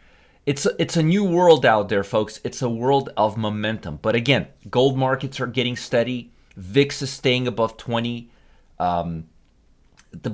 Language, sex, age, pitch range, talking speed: English, male, 30-49, 100-130 Hz, 165 wpm